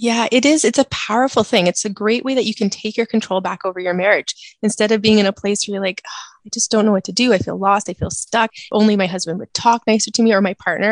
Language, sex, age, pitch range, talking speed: English, female, 20-39, 195-225 Hz, 295 wpm